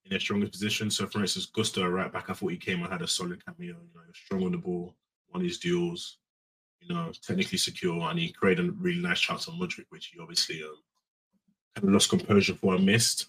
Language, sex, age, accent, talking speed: English, male, 20-39, British, 245 wpm